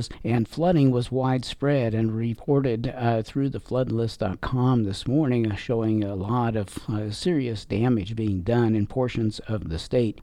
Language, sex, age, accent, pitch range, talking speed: English, male, 50-69, American, 110-140 Hz, 155 wpm